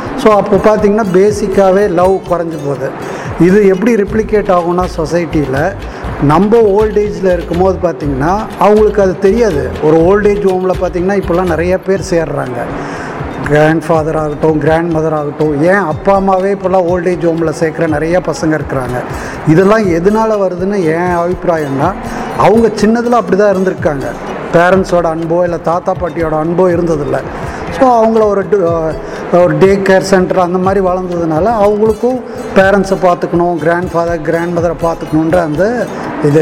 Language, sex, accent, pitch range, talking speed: Tamil, male, native, 165-195 Hz, 130 wpm